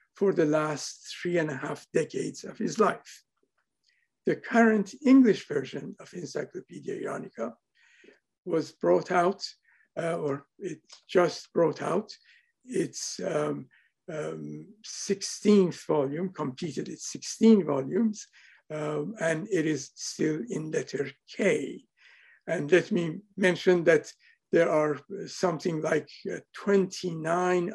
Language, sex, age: English, male, 60-79